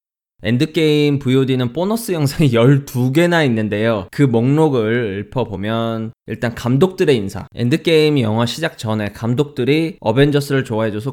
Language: Korean